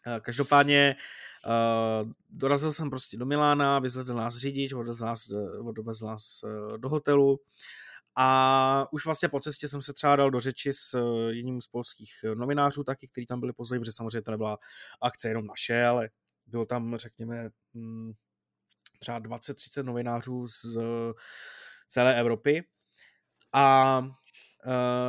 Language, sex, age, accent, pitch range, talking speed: Czech, male, 20-39, native, 120-140 Hz, 130 wpm